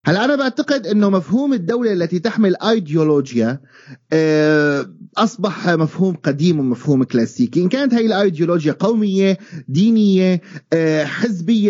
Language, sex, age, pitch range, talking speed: Arabic, male, 30-49, 145-205 Hz, 110 wpm